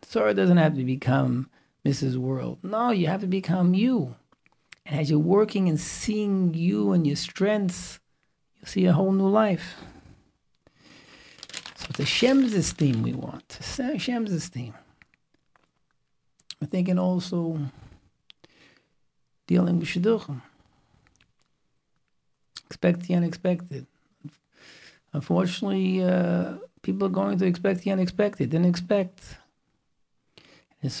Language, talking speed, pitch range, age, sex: English, 115 wpm, 140-185 Hz, 50-69, male